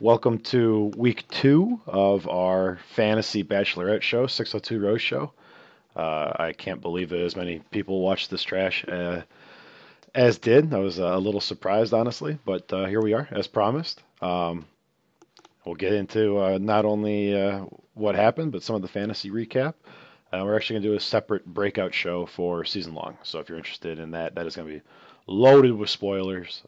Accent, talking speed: American, 185 wpm